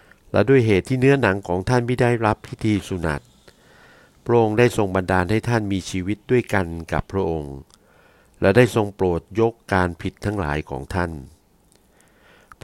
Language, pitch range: Thai, 85-110 Hz